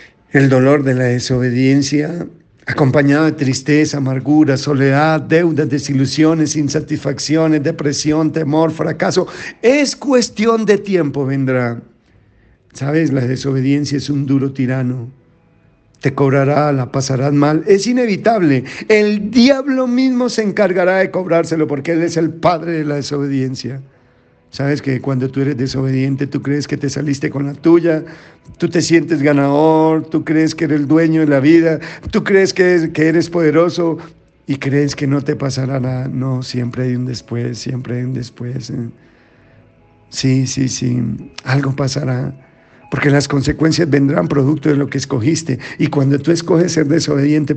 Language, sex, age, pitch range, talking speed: Spanish, male, 50-69, 135-160 Hz, 150 wpm